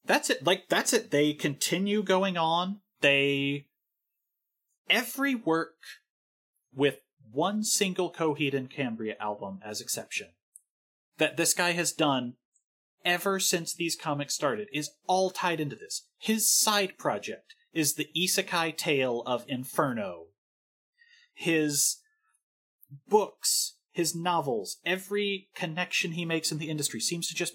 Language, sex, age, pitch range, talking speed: English, male, 30-49, 140-205 Hz, 125 wpm